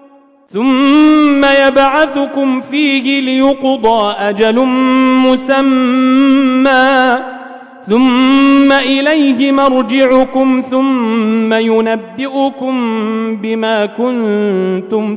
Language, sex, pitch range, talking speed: Arabic, male, 230-300 Hz, 50 wpm